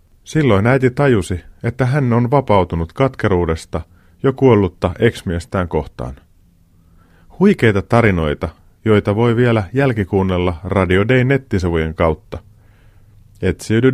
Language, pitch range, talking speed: Finnish, 90-120 Hz, 95 wpm